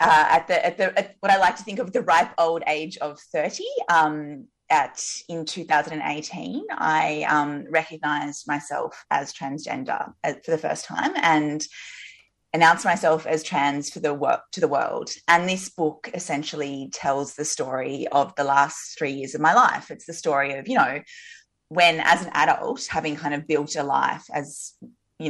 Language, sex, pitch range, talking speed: English, female, 145-170 Hz, 180 wpm